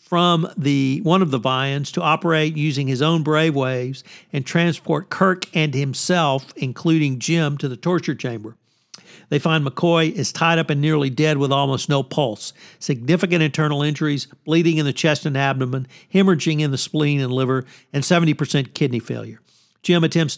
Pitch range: 140-165 Hz